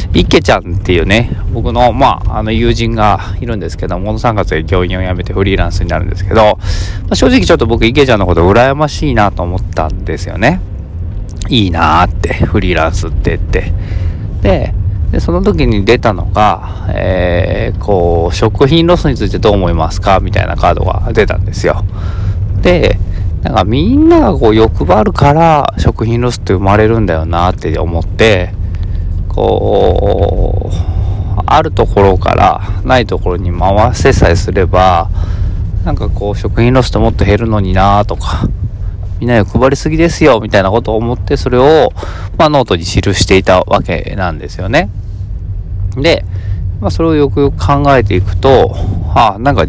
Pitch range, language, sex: 90-110 Hz, Japanese, male